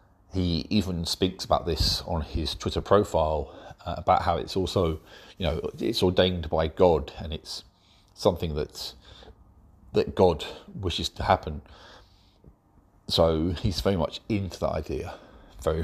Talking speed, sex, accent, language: 140 wpm, male, British, English